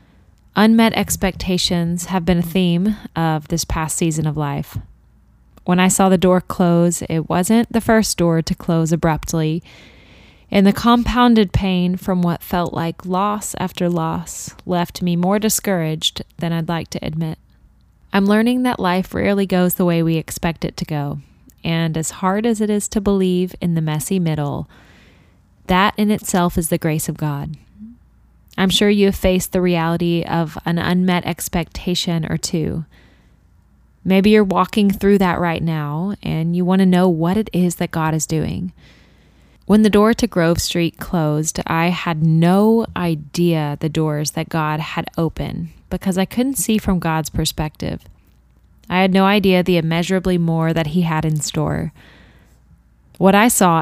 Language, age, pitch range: English, 10-29, 160-190 Hz